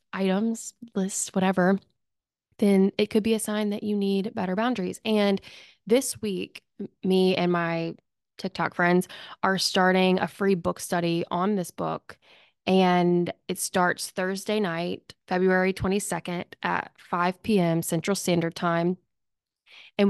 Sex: female